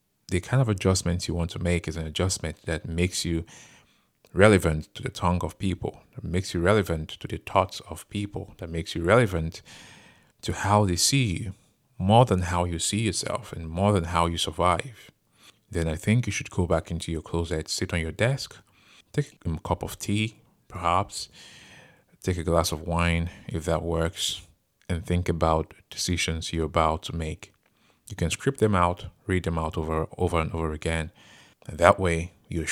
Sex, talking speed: male, 190 wpm